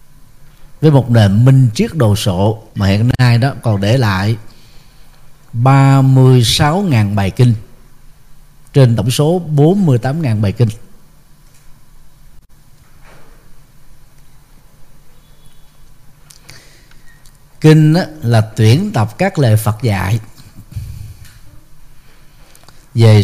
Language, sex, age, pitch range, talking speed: Vietnamese, male, 50-69, 115-145 Hz, 85 wpm